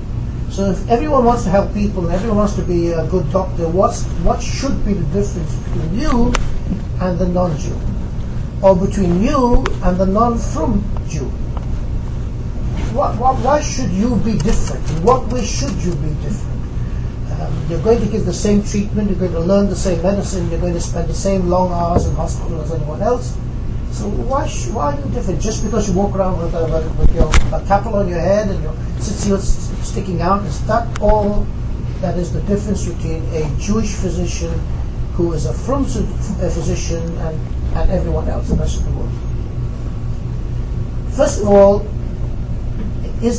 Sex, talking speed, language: male, 175 wpm, English